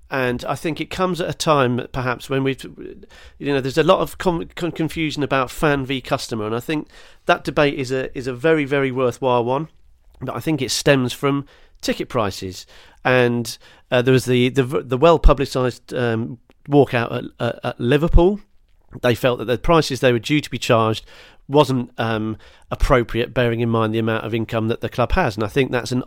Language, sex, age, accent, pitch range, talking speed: English, male, 40-59, British, 120-145 Hz, 205 wpm